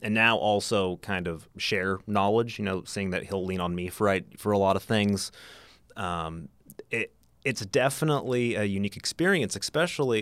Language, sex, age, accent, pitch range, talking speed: English, male, 30-49, American, 90-115 Hz, 165 wpm